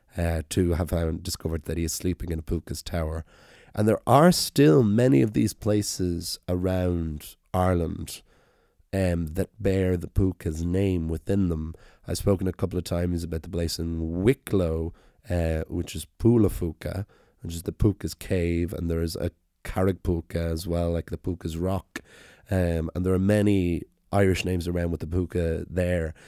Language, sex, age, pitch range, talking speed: English, male, 30-49, 85-95 Hz, 170 wpm